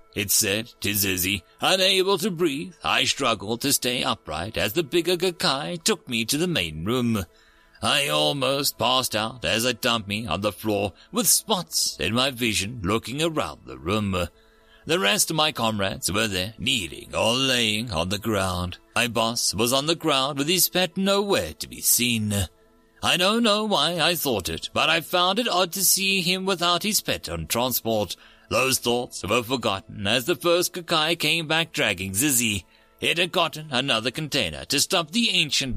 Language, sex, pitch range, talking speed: English, male, 105-170 Hz, 185 wpm